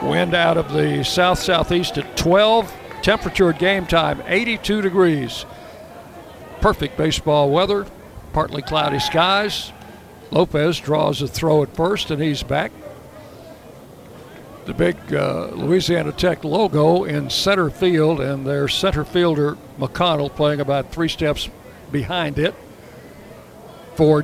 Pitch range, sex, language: 140-175 Hz, male, English